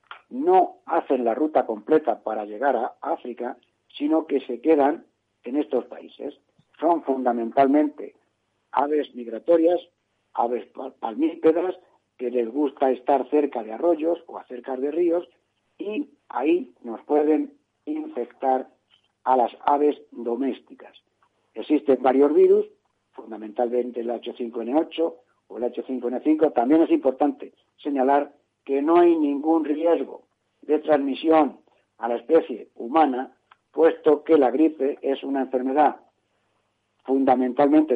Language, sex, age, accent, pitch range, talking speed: Spanish, male, 60-79, Spanish, 125-160 Hz, 115 wpm